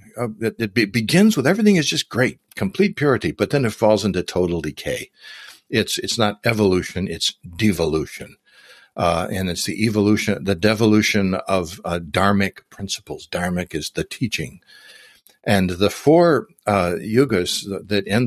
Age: 60-79